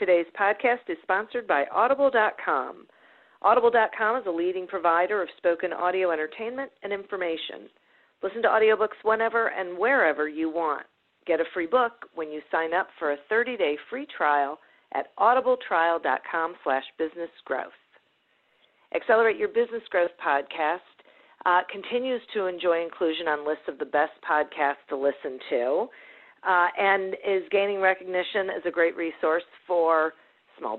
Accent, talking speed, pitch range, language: American, 140 wpm, 155-200 Hz, English